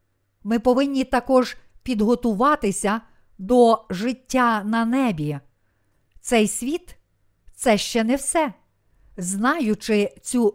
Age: 50-69